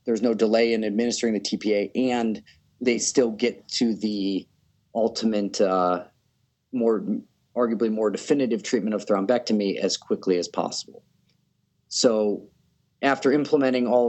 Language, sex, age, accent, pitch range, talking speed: English, male, 40-59, American, 100-120 Hz, 130 wpm